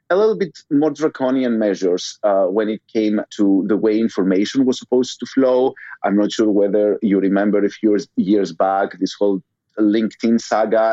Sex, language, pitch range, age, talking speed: male, English, 100-120 Hz, 30-49, 175 wpm